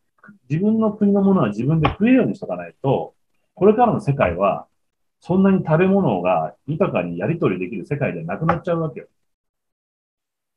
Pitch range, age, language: 115-195 Hz, 40-59, Japanese